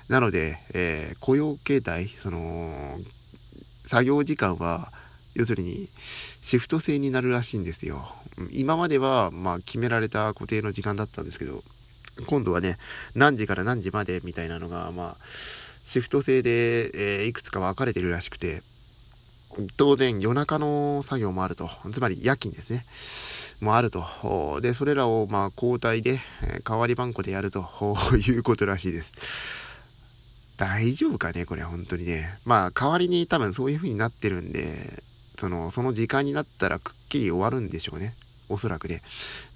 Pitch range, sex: 95-130 Hz, male